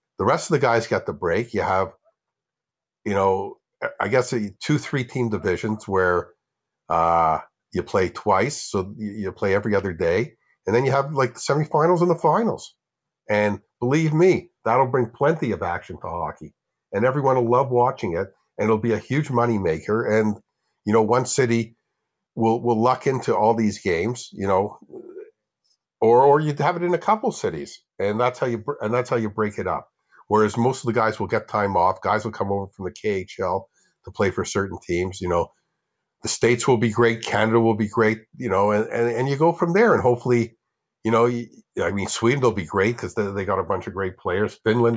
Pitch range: 105-125 Hz